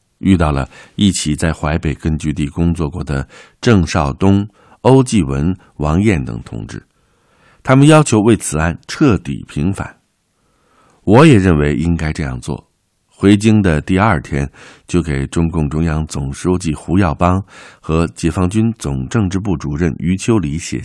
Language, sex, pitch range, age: Chinese, male, 75-105 Hz, 50-69